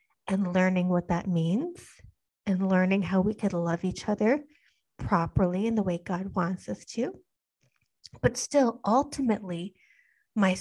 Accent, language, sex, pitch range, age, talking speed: American, English, female, 180-215 Hz, 30-49, 140 wpm